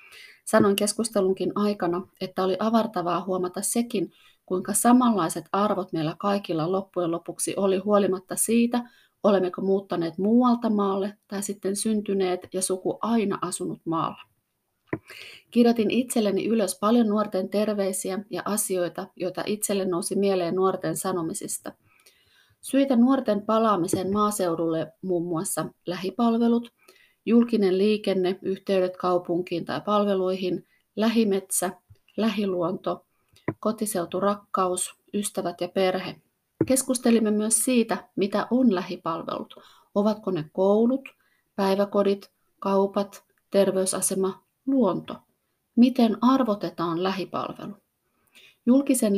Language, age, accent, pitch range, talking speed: Finnish, 30-49, native, 185-215 Hz, 100 wpm